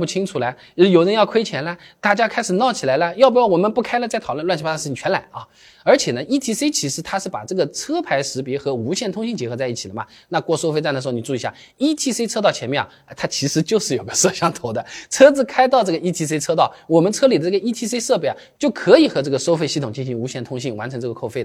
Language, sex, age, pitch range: Chinese, male, 20-39, 140-220 Hz